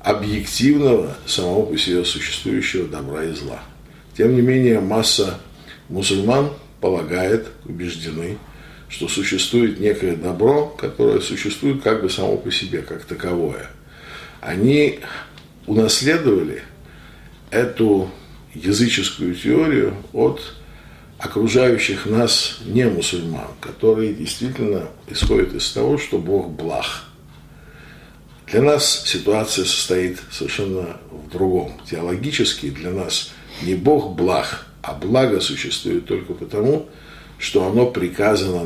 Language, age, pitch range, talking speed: Russian, 50-69, 80-115 Hz, 105 wpm